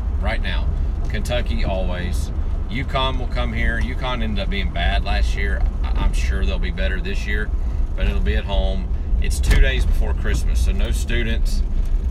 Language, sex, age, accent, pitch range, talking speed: English, male, 40-59, American, 65-80 Hz, 175 wpm